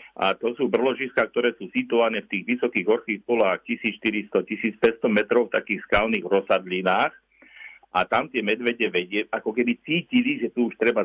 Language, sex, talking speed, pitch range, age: Slovak, male, 165 wpm, 105-120 Hz, 50-69